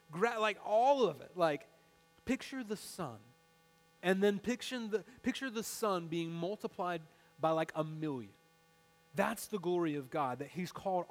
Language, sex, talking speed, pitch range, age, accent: English, male, 150 wpm, 165-220 Hz, 30-49, American